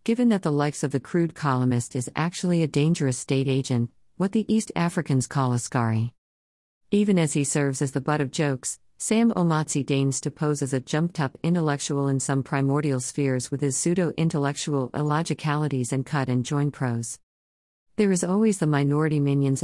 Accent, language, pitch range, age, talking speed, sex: American, English, 130-150 Hz, 50-69, 170 wpm, female